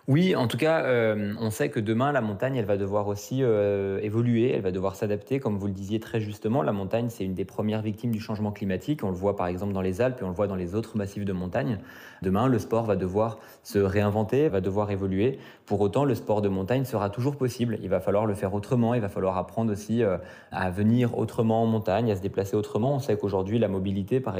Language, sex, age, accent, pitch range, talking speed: French, male, 20-39, French, 100-115 Hz, 250 wpm